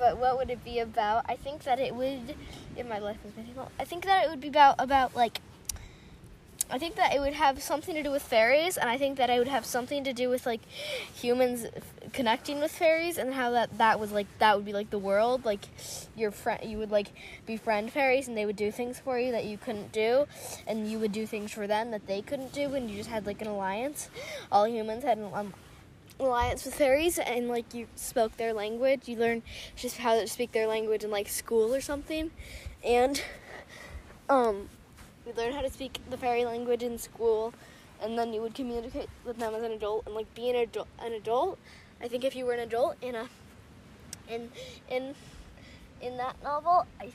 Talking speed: 220 wpm